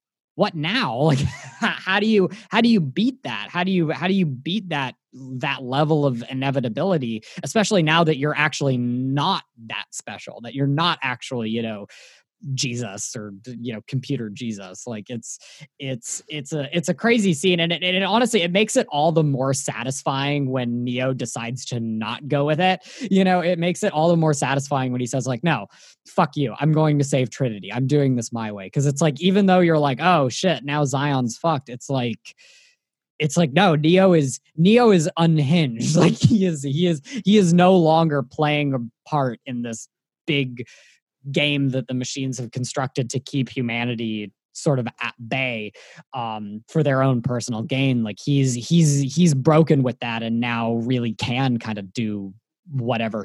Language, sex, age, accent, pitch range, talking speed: English, male, 20-39, American, 125-165 Hz, 190 wpm